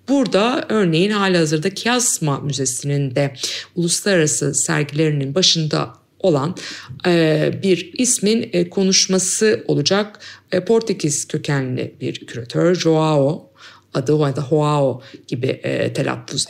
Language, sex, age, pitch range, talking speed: Turkish, female, 50-69, 145-195 Hz, 105 wpm